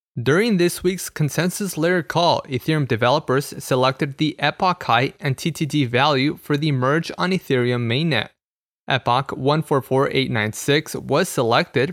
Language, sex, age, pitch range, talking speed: English, male, 20-39, 125-155 Hz, 125 wpm